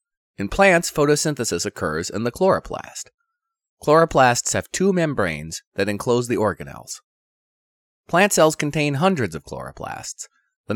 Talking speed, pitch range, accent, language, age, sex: 125 wpm, 110-160 Hz, American, English, 30-49, male